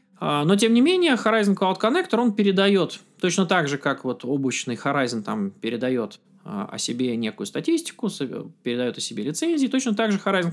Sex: male